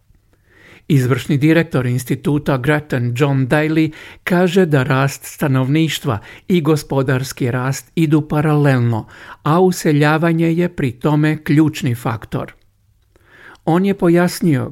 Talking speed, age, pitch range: 100 wpm, 50-69, 135-160 Hz